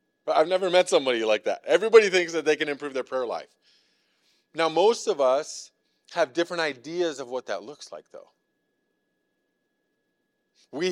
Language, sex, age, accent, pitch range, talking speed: English, male, 30-49, American, 130-170 Hz, 165 wpm